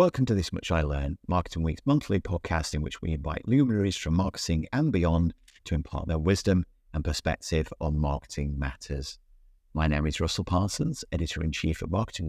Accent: British